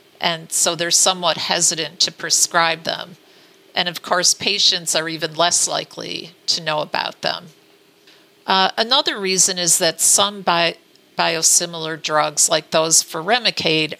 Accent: American